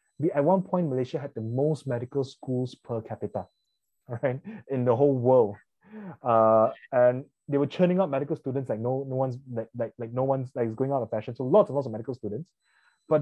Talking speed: 210 wpm